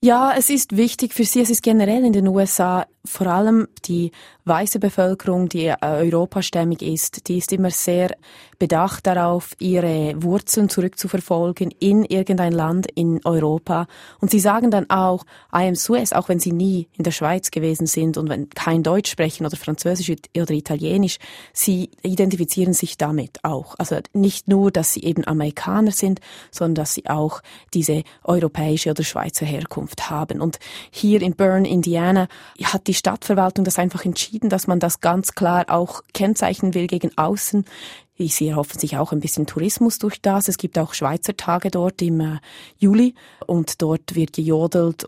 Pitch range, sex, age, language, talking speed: 160-195 Hz, female, 20-39, German, 165 wpm